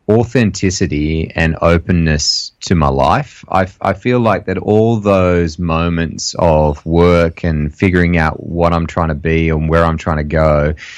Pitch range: 85-100 Hz